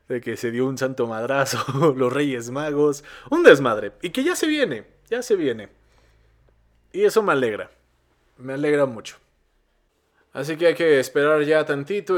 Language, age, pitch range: Spanish, 20-39, 110-160 Hz